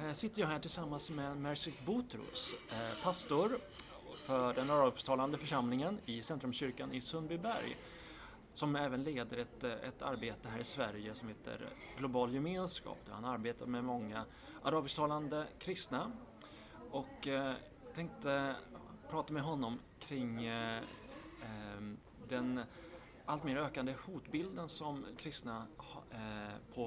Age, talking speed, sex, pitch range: 30-49, 105 wpm, male, 120-150 Hz